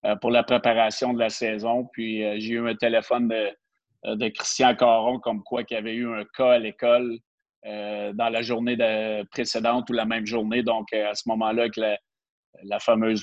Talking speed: 195 wpm